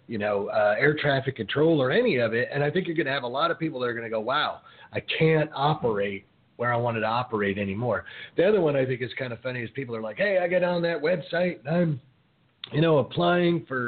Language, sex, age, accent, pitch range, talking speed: English, male, 40-59, American, 110-160 Hz, 265 wpm